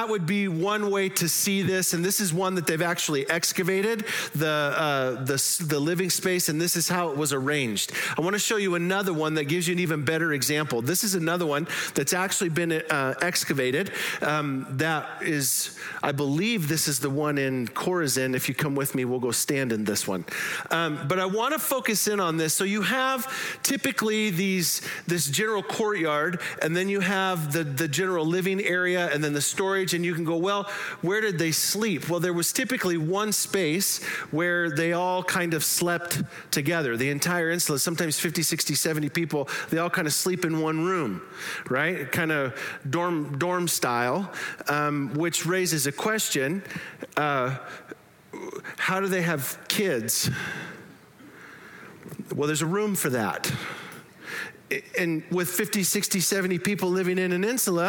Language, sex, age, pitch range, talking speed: English, male, 40-59, 150-190 Hz, 180 wpm